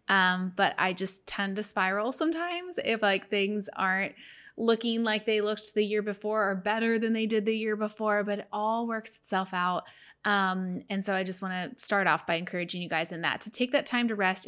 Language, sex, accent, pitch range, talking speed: English, female, American, 190-225 Hz, 225 wpm